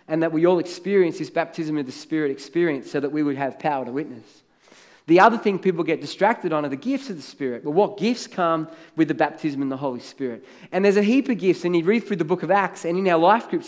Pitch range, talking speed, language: 165-225 Hz, 270 wpm, English